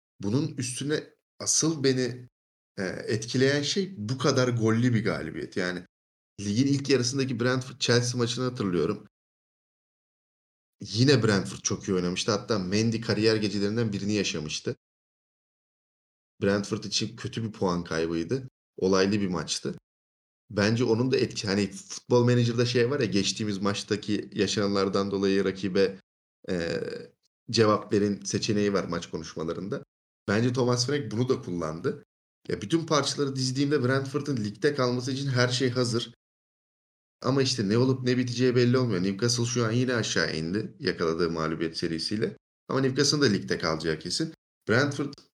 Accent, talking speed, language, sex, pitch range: native, 135 wpm, Turkish, male, 100-125 Hz